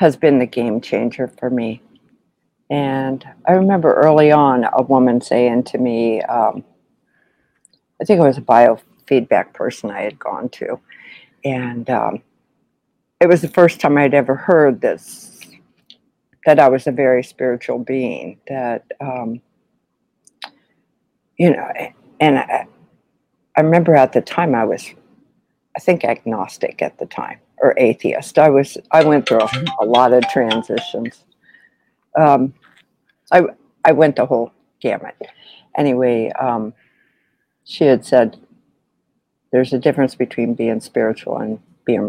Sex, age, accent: female, 60-79, American